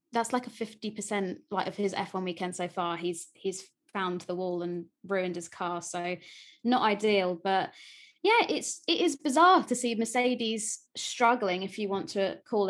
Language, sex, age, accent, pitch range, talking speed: English, female, 20-39, British, 190-245 Hz, 185 wpm